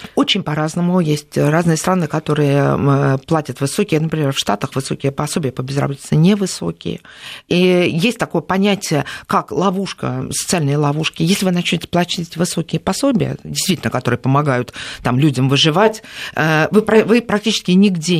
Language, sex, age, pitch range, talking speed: Russian, female, 50-69, 155-205 Hz, 130 wpm